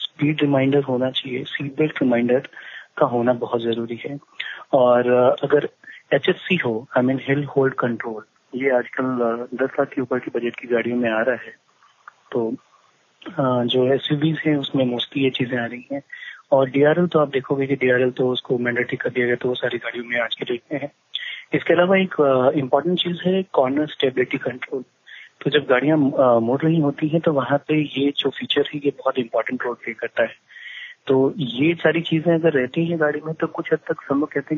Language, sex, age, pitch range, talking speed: Hindi, male, 30-49, 130-160 Hz, 210 wpm